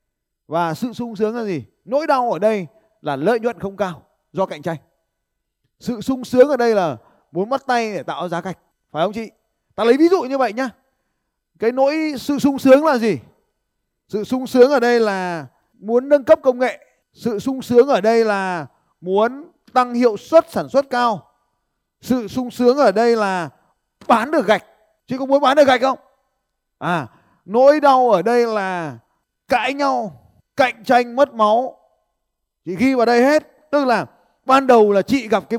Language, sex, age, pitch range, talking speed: Vietnamese, male, 20-39, 195-255 Hz, 190 wpm